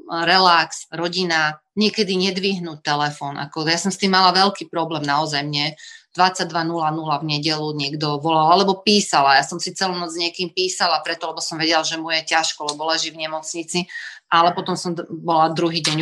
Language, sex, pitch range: Slovak, female, 165-200 Hz